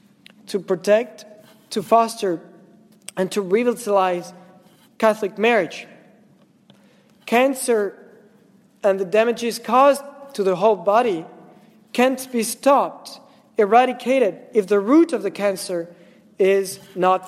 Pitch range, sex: 195-235 Hz, male